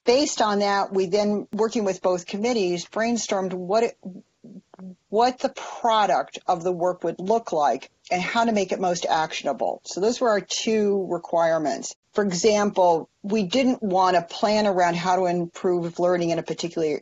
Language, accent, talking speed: English, American, 175 wpm